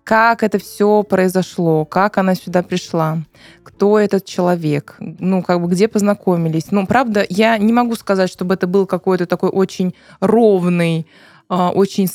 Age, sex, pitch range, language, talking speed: 20-39, female, 175-220 Hz, Russian, 150 wpm